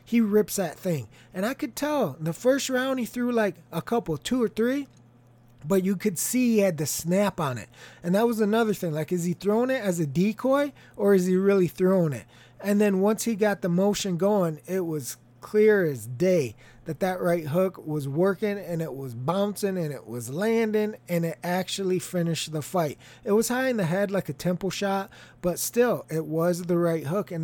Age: 20-39